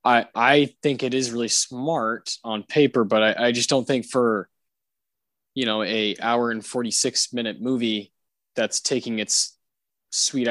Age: 20-39